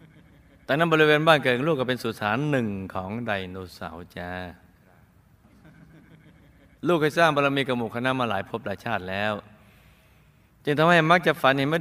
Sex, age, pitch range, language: male, 20-39, 100-130 Hz, Thai